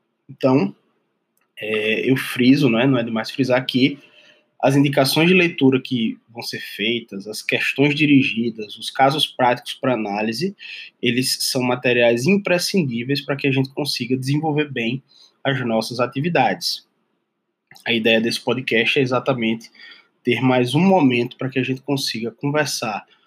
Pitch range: 115-140 Hz